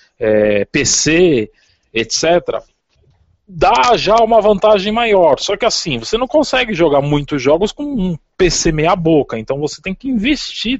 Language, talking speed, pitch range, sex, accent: Portuguese, 150 wpm, 125-205 Hz, male, Brazilian